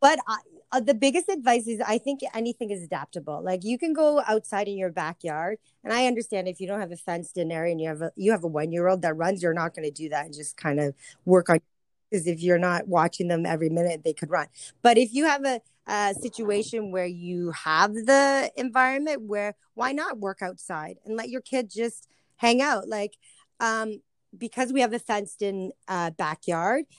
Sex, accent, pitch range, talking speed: female, American, 175-235 Hz, 215 wpm